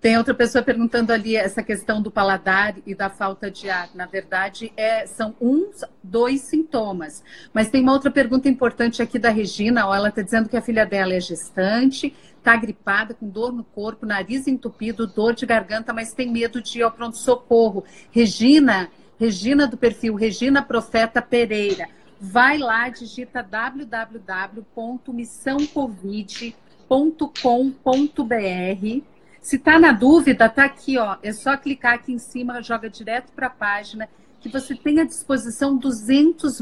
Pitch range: 215-260 Hz